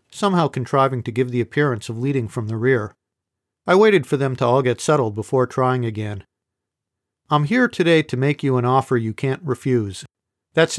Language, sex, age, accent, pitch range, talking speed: English, male, 50-69, American, 115-150 Hz, 190 wpm